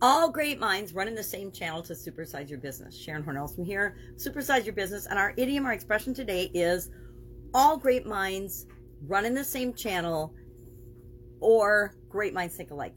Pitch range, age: 140-205 Hz, 40-59